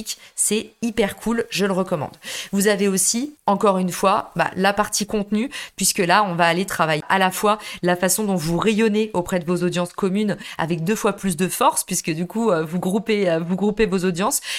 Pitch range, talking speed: 175-215 Hz, 205 wpm